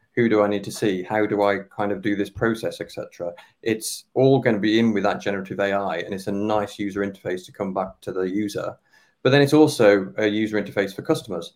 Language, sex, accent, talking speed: English, male, British, 240 wpm